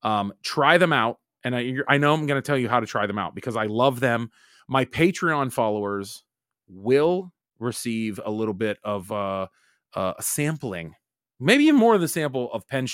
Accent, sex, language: American, male, English